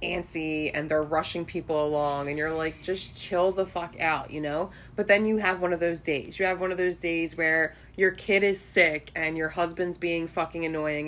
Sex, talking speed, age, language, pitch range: female, 220 wpm, 20-39, English, 160-190 Hz